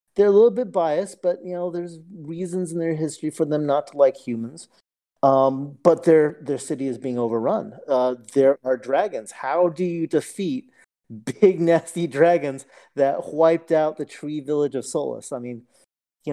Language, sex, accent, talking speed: English, male, American, 180 wpm